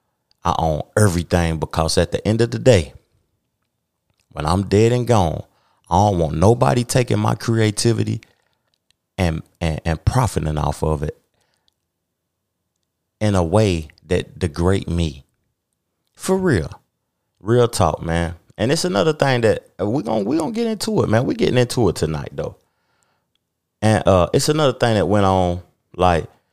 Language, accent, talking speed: English, American, 155 wpm